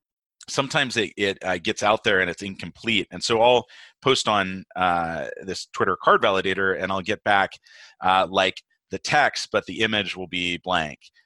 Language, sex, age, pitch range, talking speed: English, male, 30-49, 85-110 Hz, 180 wpm